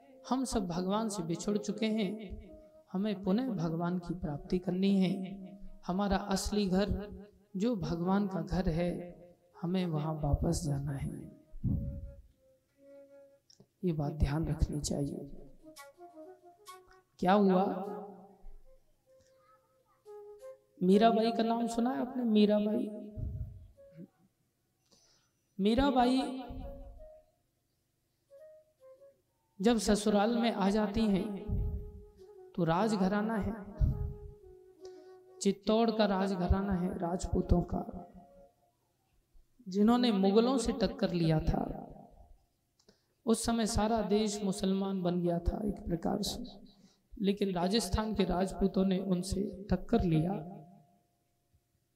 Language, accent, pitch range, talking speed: Hindi, native, 180-235 Hz, 95 wpm